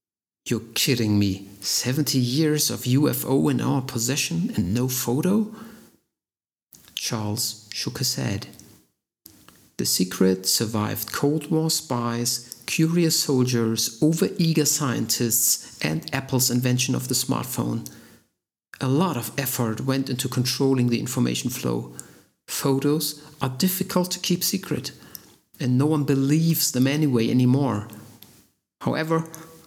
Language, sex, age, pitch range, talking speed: English, male, 50-69, 115-145 Hz, 115 wpm